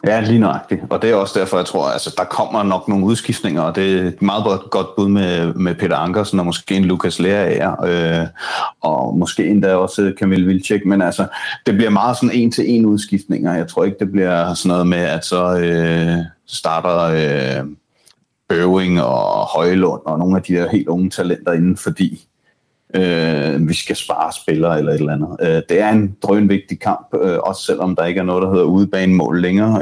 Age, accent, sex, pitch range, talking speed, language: 30-49, native, male, 85-100 Hz, 210 wpm, Danish